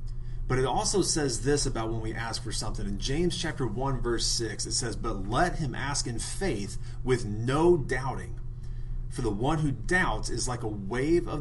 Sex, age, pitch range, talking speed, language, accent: male, 30-49, 120-140 Hz, 200 wpm, English, American